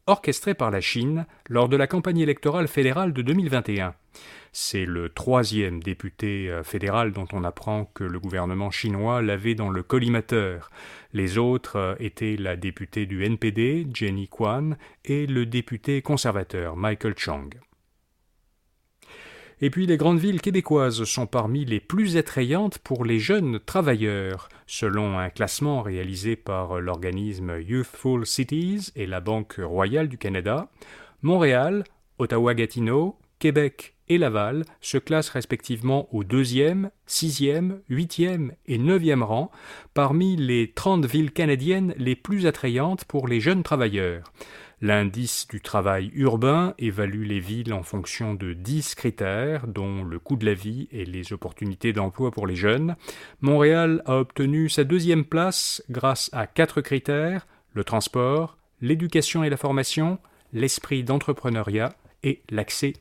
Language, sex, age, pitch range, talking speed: French, male, 30-49, 105-150 Hz, 135 wpm